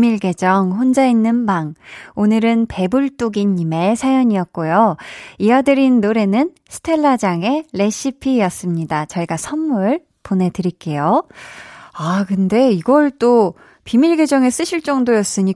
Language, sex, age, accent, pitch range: Korean, female, 20-39, native, 190-270 Hz